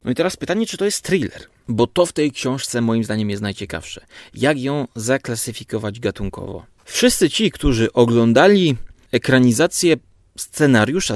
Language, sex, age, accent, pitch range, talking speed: Polish, male, 30-49, native, 115-140 Hz, 145 wpm